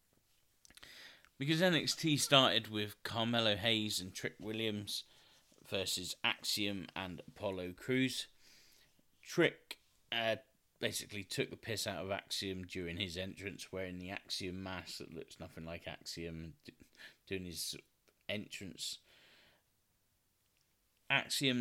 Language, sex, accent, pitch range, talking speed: English, male, British, 95-120 Hz, 110 wpm